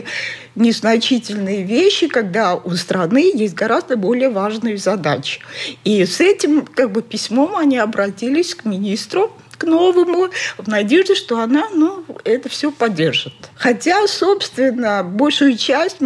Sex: female